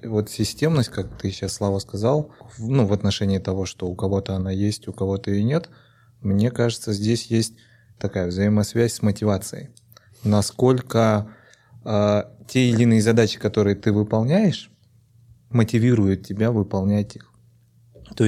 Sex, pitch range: male, 100-120 Hz